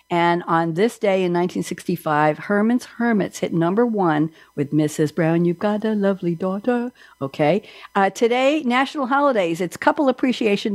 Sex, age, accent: female, 60-79, American